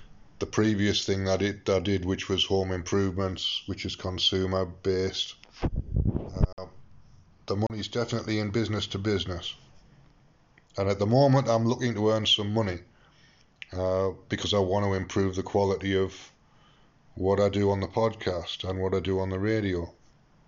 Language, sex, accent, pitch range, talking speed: English, male, British, 100-120 Hz, 165 wpm